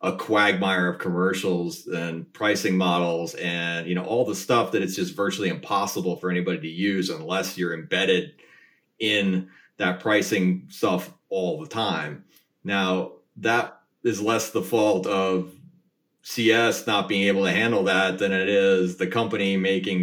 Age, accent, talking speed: 30-49, American, 155 wpm